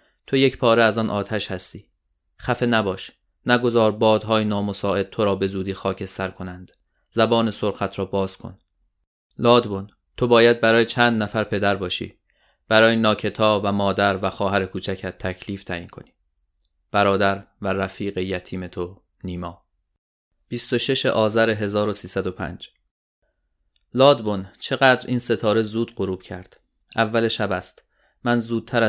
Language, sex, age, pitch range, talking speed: Persian, male, 30-49, 95-115 Hz, 130 wpm